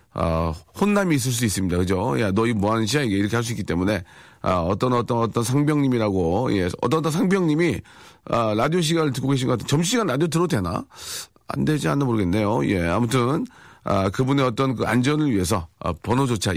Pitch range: 100-145 Hz